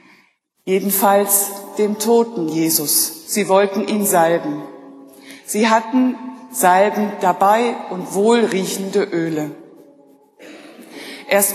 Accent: German